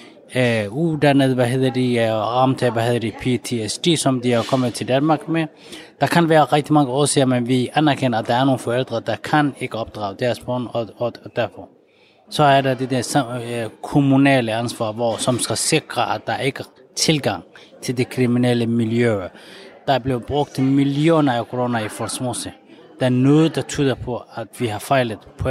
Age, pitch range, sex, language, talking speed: 20-39, 120-140 Hz, male, Danish, 195 wpm